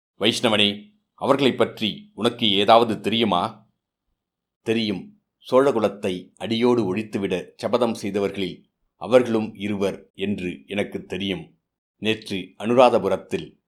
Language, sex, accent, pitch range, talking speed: Tamil, male, native, 95-115 Hz, 85 wpm